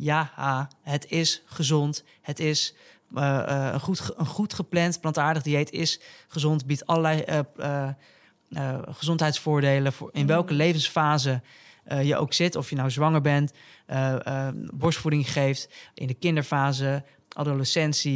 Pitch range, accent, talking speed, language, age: 140-165 Hz, Dutch, 140 wpm, Dutch, 20-39